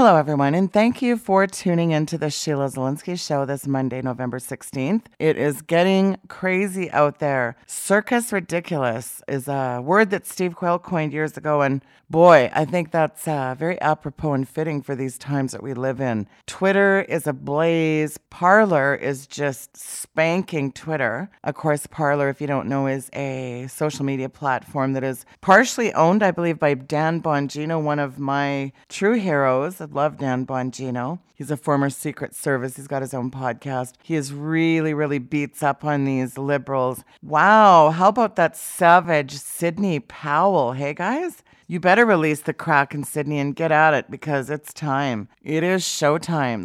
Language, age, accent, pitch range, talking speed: English, 40-59, American, 135-170 Hz, 170 wpm